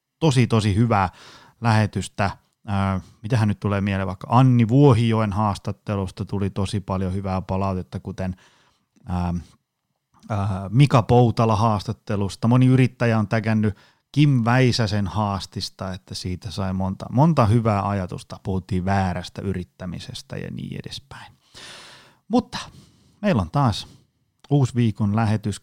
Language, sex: Finnish, male